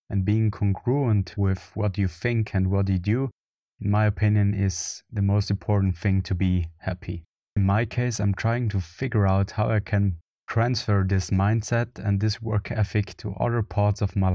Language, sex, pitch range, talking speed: English, male, 95-110 Hz, 190 wpm